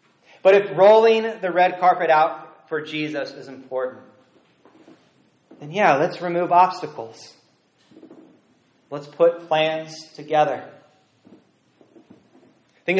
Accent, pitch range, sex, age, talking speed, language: American, 140-180 Hz, male, 30-49, 95 wpm, English